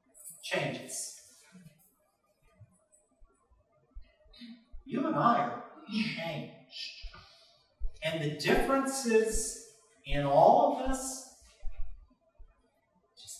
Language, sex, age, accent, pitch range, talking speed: English, male, 40-59, American, 135-210 Hz, 65 wpm